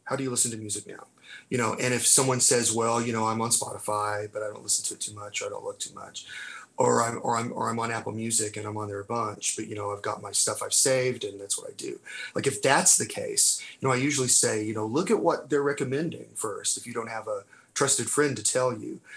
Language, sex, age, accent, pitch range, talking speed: English, male, 30-49, American, 110-155 Hz, 280 wpm